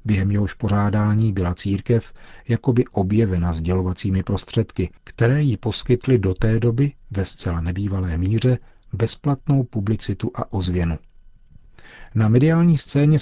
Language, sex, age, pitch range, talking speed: Czech, male, 40-59, 95-120 Hz, 120 wpm